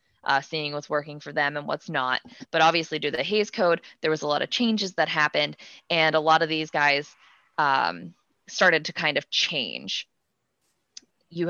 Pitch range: 145-170 Hz